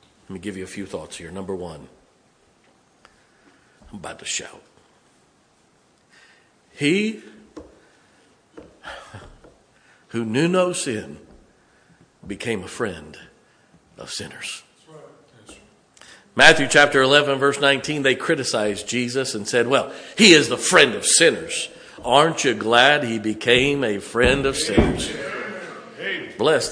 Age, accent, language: 50-69, American, English